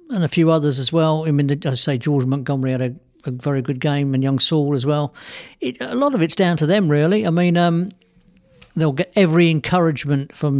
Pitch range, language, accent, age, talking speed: 130-155 Hz, English, British, 50-69, 225 wpm